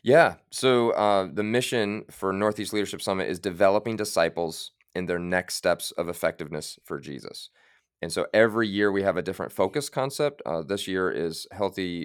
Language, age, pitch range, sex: English, 30-49, 85-105 Hz, male